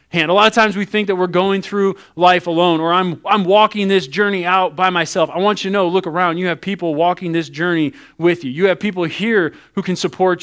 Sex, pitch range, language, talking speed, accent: male, 150-185 Hz, English, 255 wpm, American